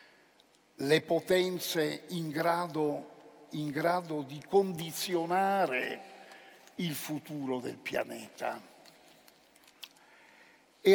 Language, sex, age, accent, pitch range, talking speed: Italian, male, 60-79, native, 140-175 Hz, 65 wpm